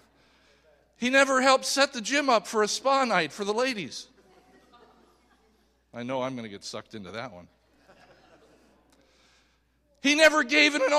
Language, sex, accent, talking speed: English, male, American, 155 wpm